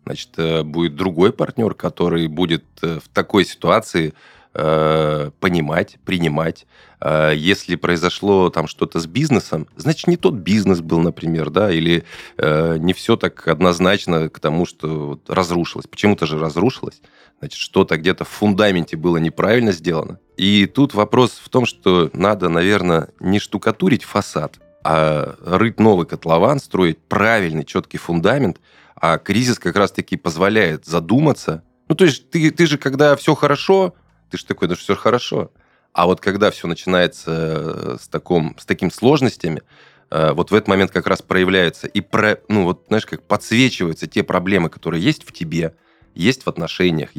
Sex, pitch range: male, 80-105 Hz